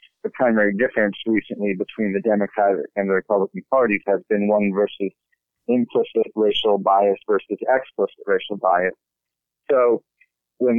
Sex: male